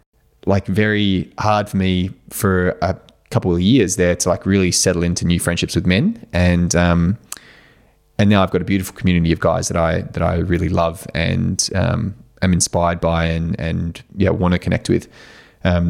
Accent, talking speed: Australian, 190 wpm